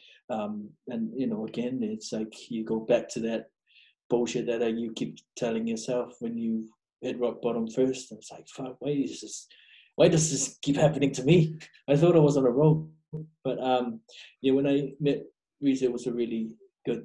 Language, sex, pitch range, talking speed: English, male, 115-145 Hz, 200 wpm